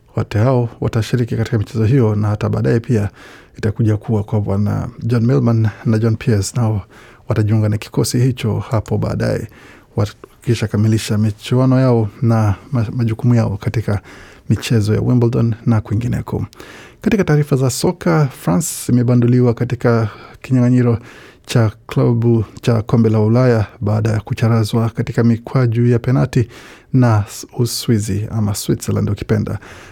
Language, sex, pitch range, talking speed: Swahili, male, 110-125 Hz, 130 wpm